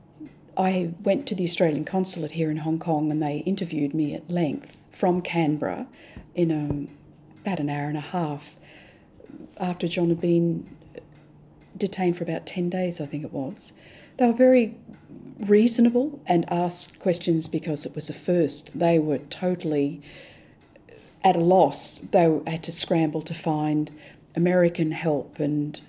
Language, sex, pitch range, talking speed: English, female, 155-205 Hz, 150 wpm